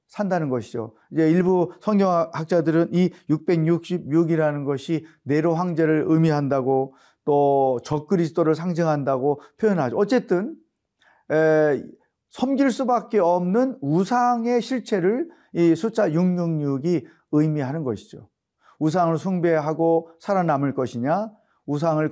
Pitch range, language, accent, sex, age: 155-200 Hz, Korean, native, male, 40-59